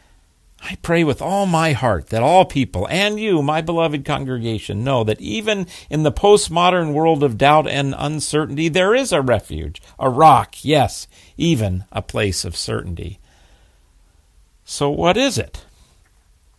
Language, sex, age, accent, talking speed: English, male, 50-69, American, 150 wpm